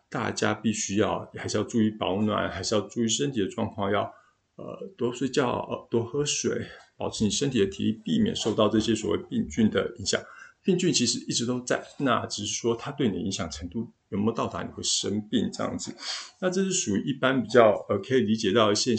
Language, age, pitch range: Chinese, 50-69, 105-140 Hz